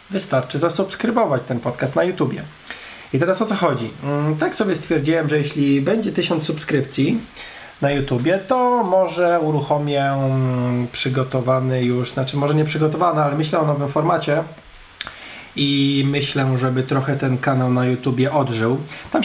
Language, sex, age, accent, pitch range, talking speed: Polish, male, 20-39, native, 130-155 Hz, 140 wpm